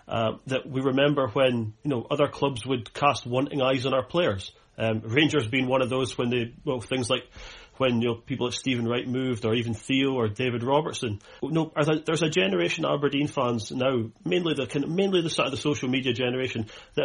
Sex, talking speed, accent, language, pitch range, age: male, 210 wpm, British, English, 120-150 Hz, 30-49